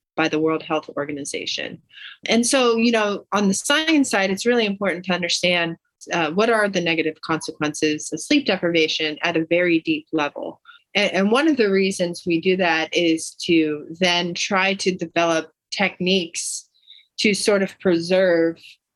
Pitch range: 160-195 Hz